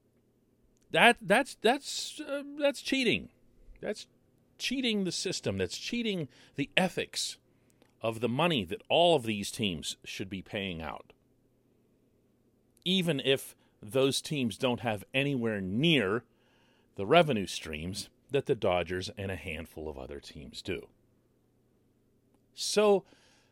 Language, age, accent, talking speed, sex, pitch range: English, 40-59, American, 120 wpm, male, 120-195 Hz